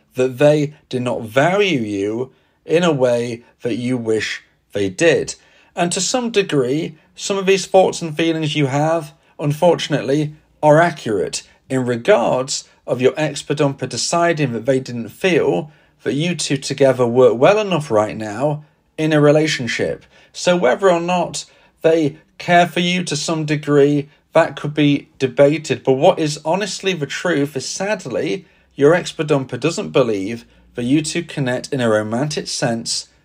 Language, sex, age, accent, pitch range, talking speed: English, male, 40-59, British, 130-165 Hz, 160 wpm